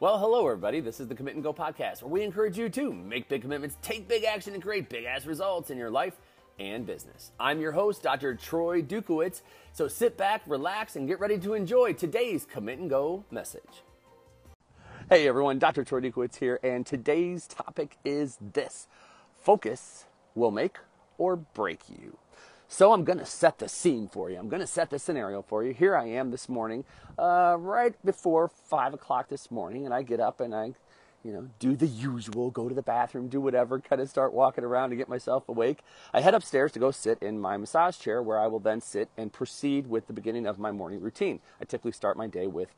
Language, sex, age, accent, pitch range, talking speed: English, male, 30-49, American, 125-180 Hz, 215 wpm